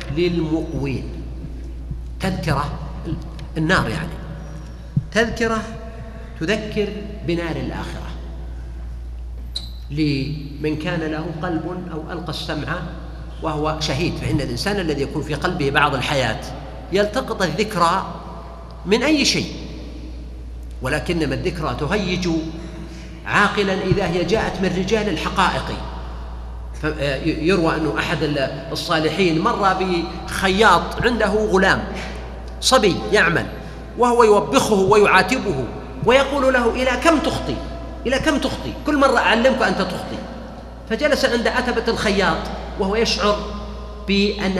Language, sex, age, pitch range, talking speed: Arabic, male, 50-69, 150-205 Hz, 100 wpm